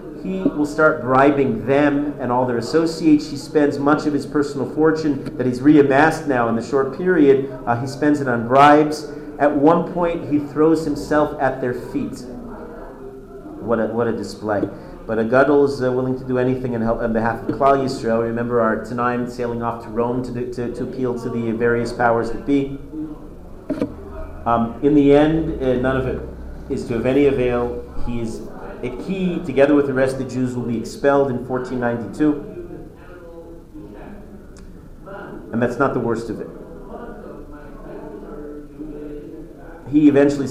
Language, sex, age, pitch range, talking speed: English, male, 40-59, 120-145 Hz, 165 wpm